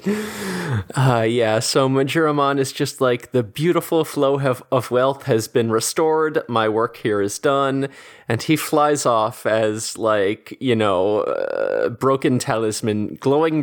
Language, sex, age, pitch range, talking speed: English, male, 20-39, 115-155 Hz, 140 wpm